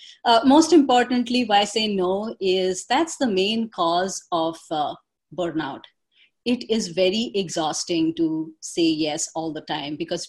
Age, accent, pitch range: 30-49, Indian, 175-235 Hz